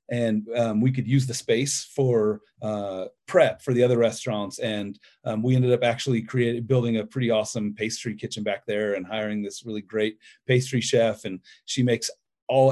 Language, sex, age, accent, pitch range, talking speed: English, male, 40-59, American, 115-140 Hz, 190 wpm